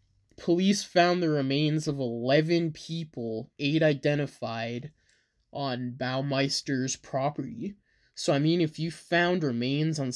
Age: 20-39